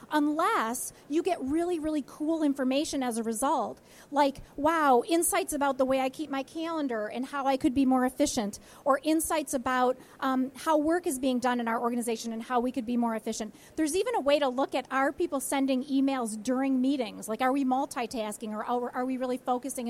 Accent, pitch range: American, 235-290 Hz